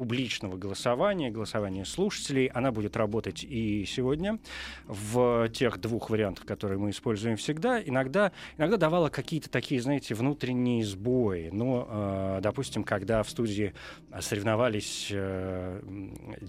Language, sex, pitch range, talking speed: Russian, male, 105-140 Hz, 115 wpm